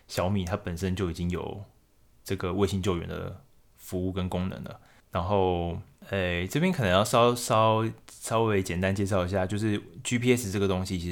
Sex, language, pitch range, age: male, Chinese, 90-110 Hz, 20-39